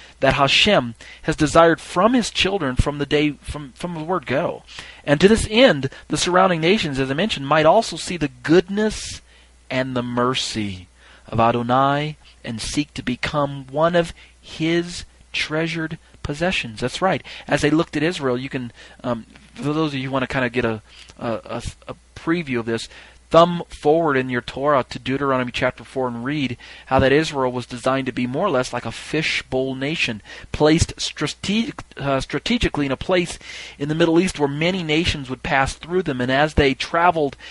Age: 40-59